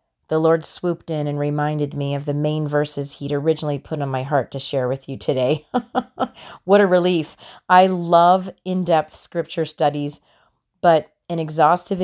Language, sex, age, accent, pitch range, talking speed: English, female, 30-49, American, 145-180 Hz, 165 wpm